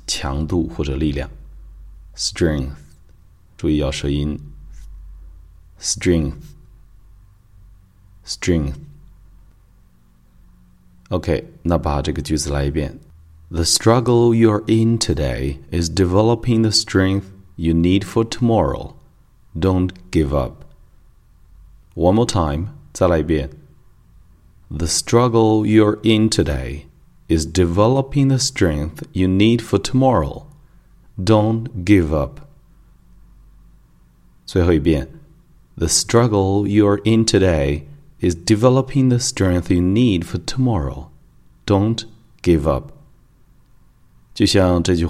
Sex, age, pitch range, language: male, 30-49, 75-105 Hz, Chinese